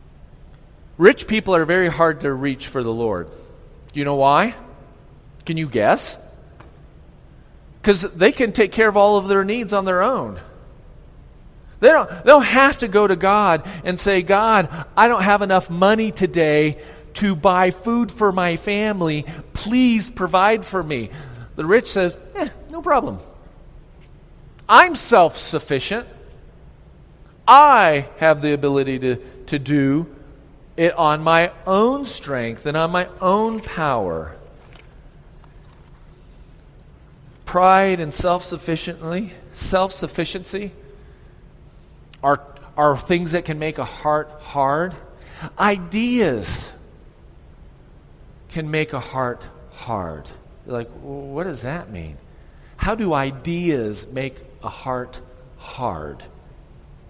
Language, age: English, 40-59